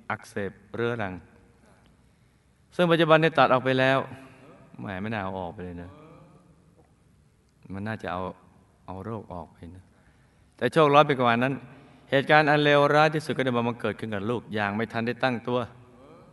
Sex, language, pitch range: male, Thai, 100-145 Hz